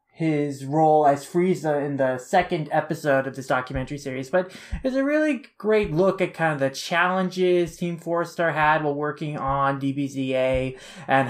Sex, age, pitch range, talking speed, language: male, 20-39, 140-180 Hz, 175 wpm, English